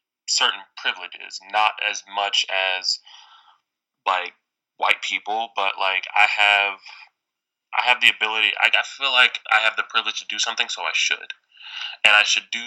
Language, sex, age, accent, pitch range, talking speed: English, male, 10-29, American, 90-105 Hz, 165 wpm